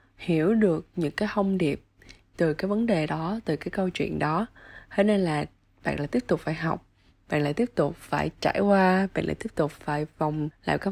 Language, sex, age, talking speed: Vietnamese, female, 20-39, 220 wpm